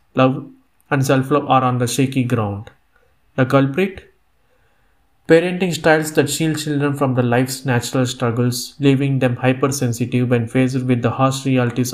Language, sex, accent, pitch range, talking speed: Telugu, male, native, 120-135 Hz, 145 wpm